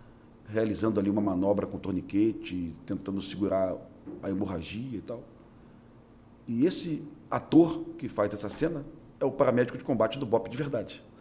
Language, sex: Portuguese, male